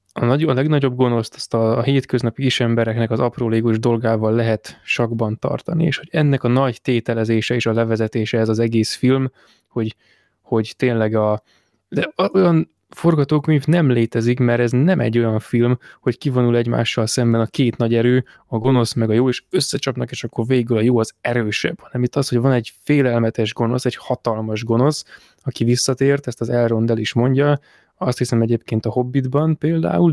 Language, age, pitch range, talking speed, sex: Hungarian, 20-39, 115-135 Hz, 180 wpm, male